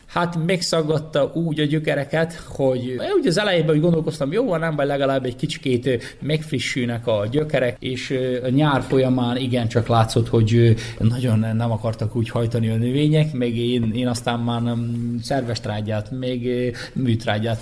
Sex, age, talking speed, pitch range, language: male, 20-39, 135 wpm, 115-135 Hz, Hungarian